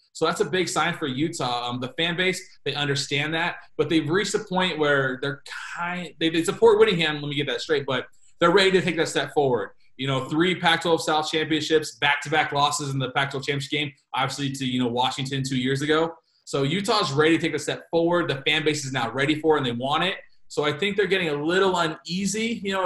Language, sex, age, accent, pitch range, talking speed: English, male, 20-39, American, 135-160 Hz, 235 wpm